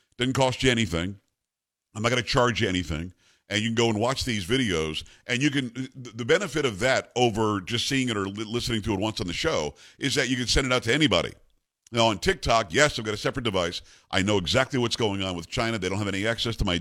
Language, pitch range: English, 100-125 Hz